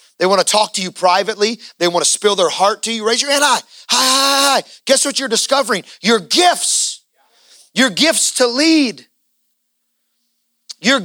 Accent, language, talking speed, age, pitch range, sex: American, English, 185 wpm, 30-49, 230-285 Hz, male